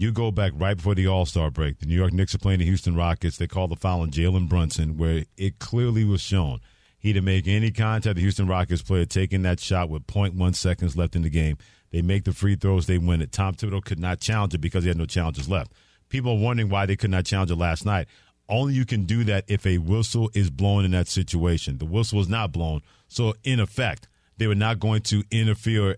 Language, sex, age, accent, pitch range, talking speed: English, male, 50-69, American, 85-110 Hz, 245 wpm